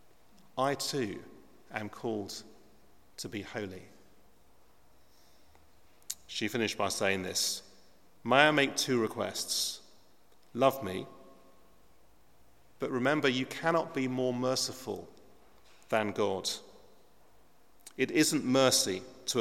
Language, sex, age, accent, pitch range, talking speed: English, male, 40-59, British, 95-125 Hz, 100 wpm